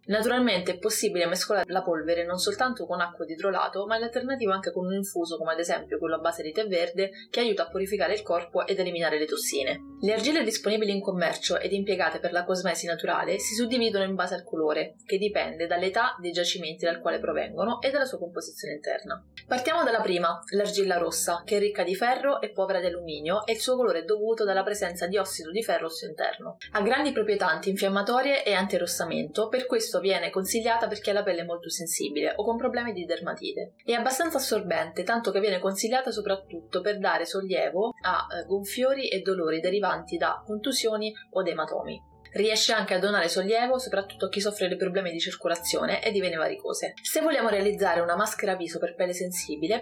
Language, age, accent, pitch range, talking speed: Italian, 20-39, native, 175-225 Hz, 200 wpm